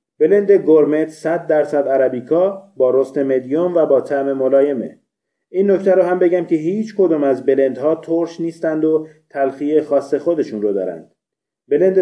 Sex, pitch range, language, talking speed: male, 135-160 Hz, Persian, 160 wpm